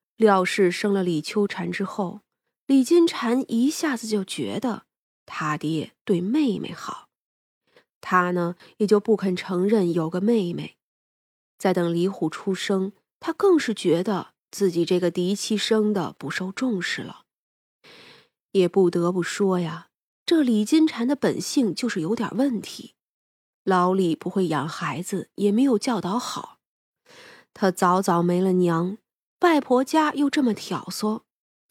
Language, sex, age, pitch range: Chinese, female, 20-39, 180-235 Hz